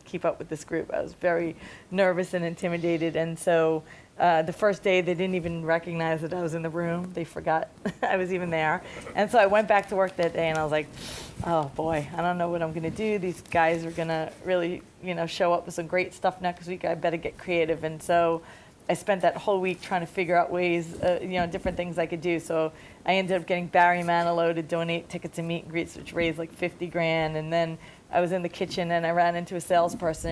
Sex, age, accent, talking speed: female, 40-59, American, 245 wpm